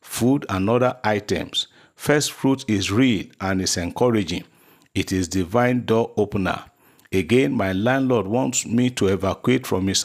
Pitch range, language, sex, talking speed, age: 95-120 Hz, English, male, 150 wpm, 50-69